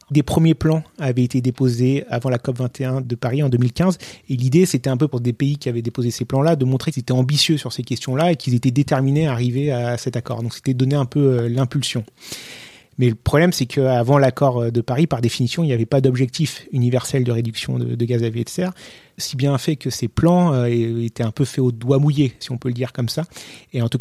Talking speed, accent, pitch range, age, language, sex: 240 wpm, French, 125-145 Hz, 30-49, French, male